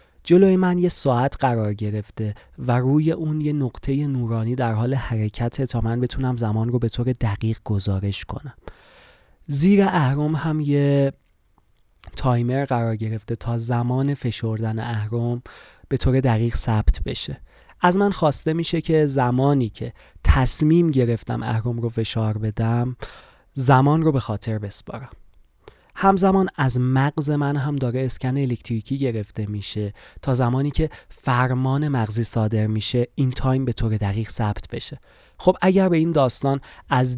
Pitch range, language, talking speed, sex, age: 115-140 Hz, Persian, 145 wpm, male, 20-39